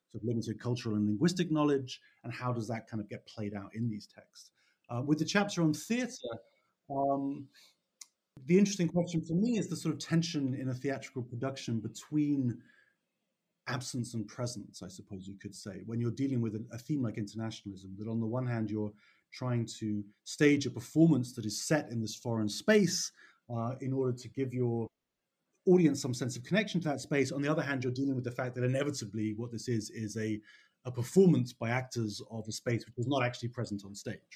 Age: 30-49